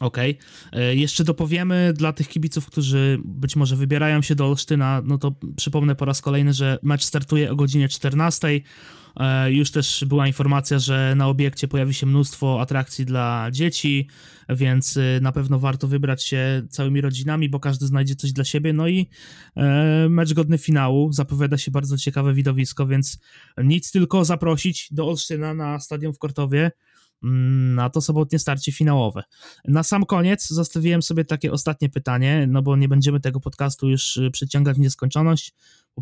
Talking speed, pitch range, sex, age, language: 160 wpm, 135-155 Hz, male, 20-39, Polish